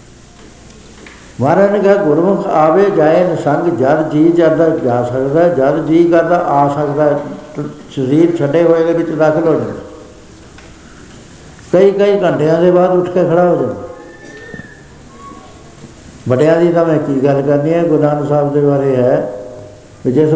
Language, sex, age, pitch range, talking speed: Punjabi, male, 70-89, 130-155 Hz, 140 wpm